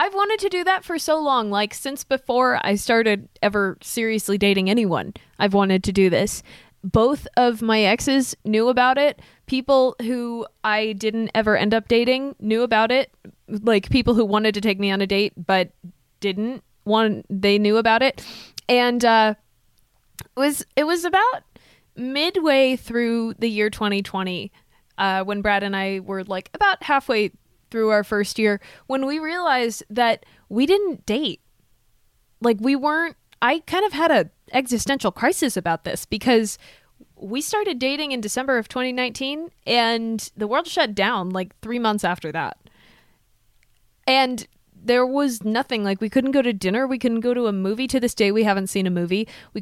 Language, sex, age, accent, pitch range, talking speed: English, female, 20-39, American, 200-260 Hz, 175 wpm